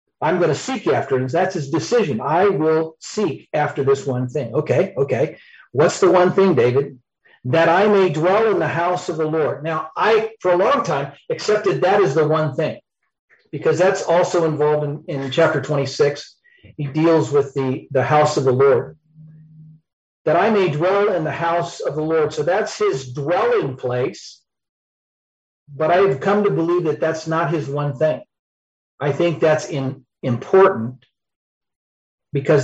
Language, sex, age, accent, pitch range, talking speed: English, male, 50-69, American, 135-175 Hz, 175 wpm